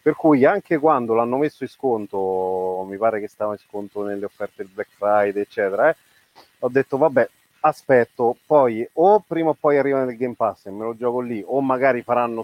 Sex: male